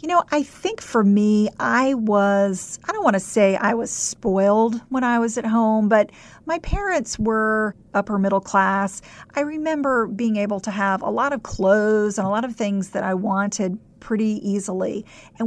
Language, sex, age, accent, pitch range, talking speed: English, female, 50-69, American, 200-235 Hz, 190 wpm